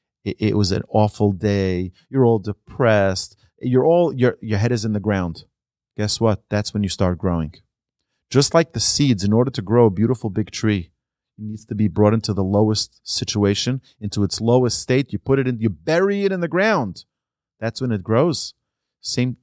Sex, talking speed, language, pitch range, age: male, 200 wpm, English, 100-130 Hz, 30-49